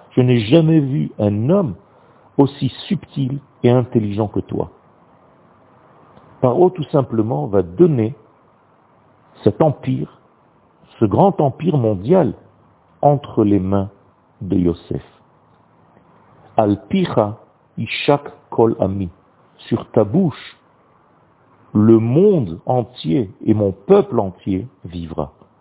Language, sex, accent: French, male, French